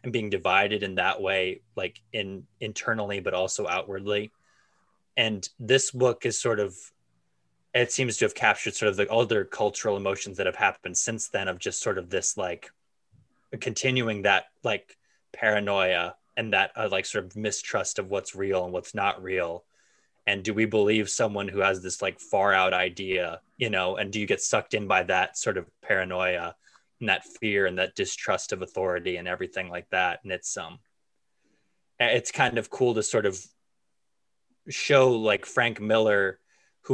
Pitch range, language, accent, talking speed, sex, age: 95-125 Hz, English, American, 180 wpm, male, 20-39